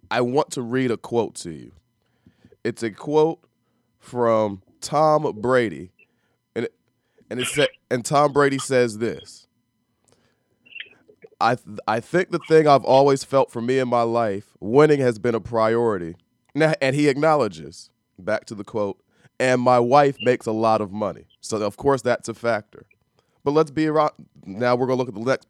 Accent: American